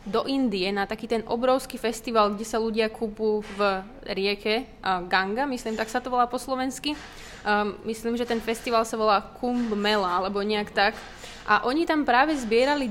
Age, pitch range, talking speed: 20-39, 210-250 Hz, 175 wpm